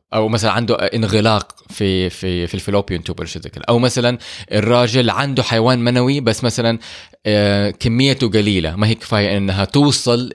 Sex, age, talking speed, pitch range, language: male, 20-39, 145 wpm, 95-120 Hz, Arabic